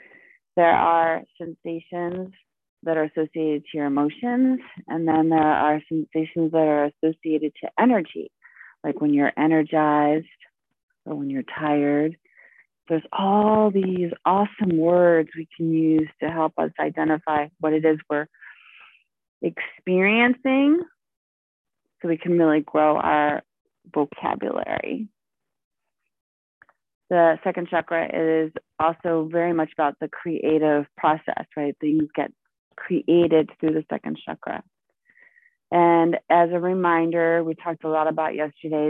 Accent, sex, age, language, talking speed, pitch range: American, female, 30-49, English, 125 wpm, 155-175 Hz